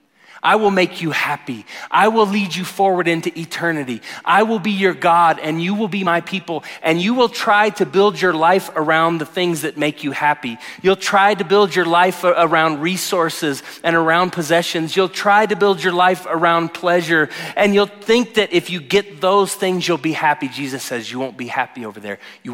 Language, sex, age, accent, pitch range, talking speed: English, male, 30-49, American, 125-175 Hz, 210 wpm